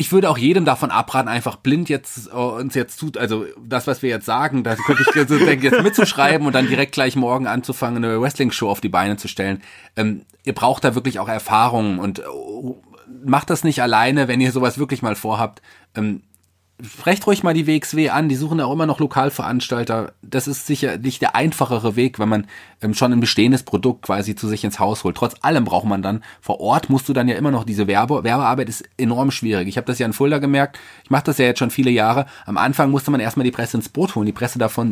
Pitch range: 110-140 Hz